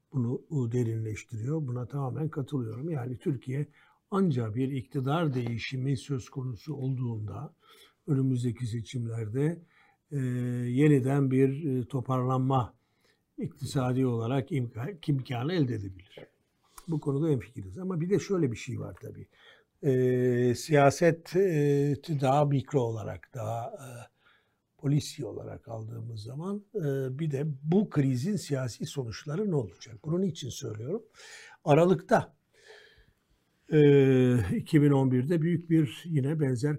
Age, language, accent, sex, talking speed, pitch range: 60-79, Turkish, native, male, 110 wpm, 120-150 Hz